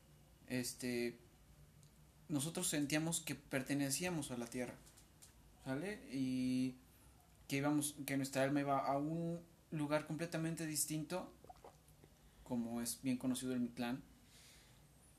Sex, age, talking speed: male, 30-49, 105 wpm